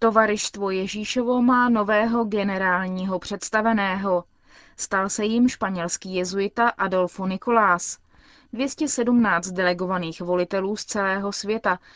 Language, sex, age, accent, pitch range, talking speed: Czech, female, 20-39, native, 185-225 Hz, 95 wpm